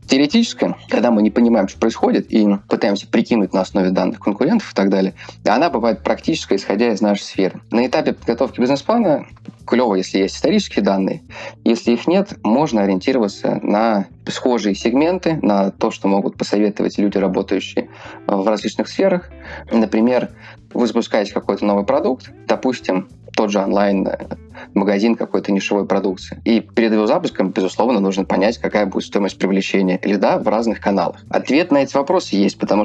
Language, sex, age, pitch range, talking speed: Russian, male, 20-39, 95-115 Hz, 155 wpm